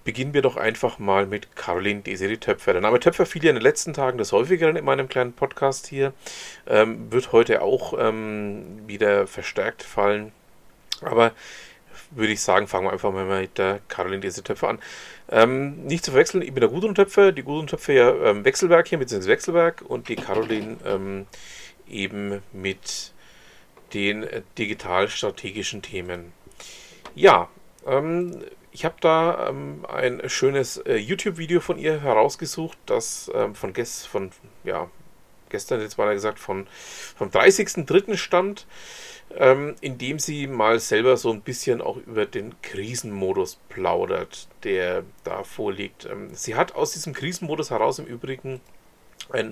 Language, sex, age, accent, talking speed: German, male, 40-59, German, 160 wpm